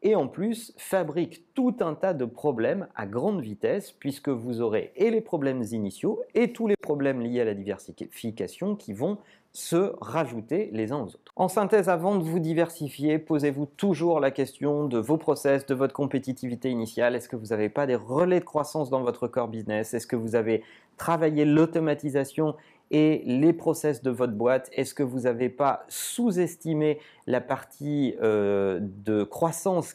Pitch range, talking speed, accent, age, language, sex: 120-160 Hz, 175 wpm, French, 40-59, French, male